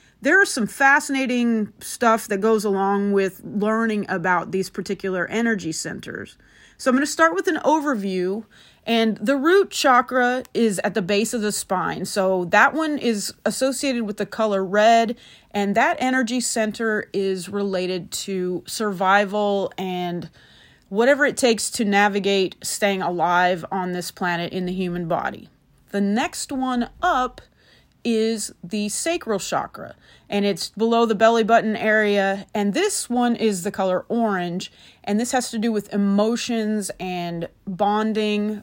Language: English